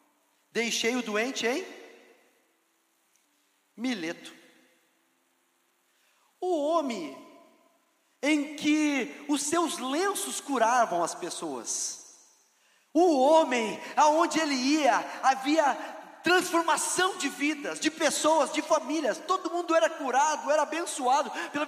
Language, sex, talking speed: Portuguese, male, 95 wpm